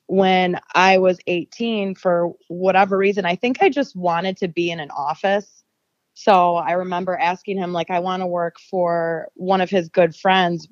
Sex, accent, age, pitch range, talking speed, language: female, American, 20-39, 160-180 Hz, 185 wpm, English